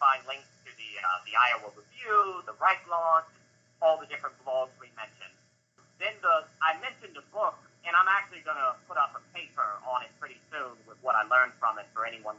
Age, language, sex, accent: 40-59, English, male, American